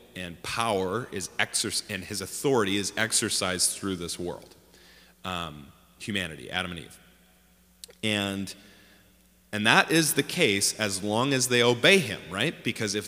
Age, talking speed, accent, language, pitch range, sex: 30-49, 145 wpm, American, English, 90-110 Hz, male